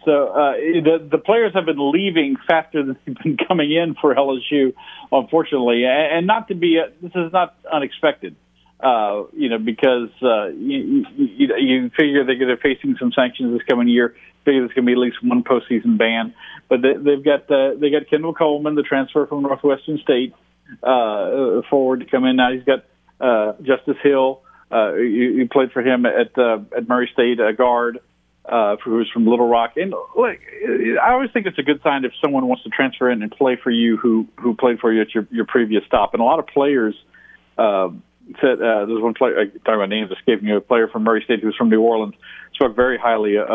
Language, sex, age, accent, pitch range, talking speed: English, male, 50-69, American, 120-165 Hz, 205 wpm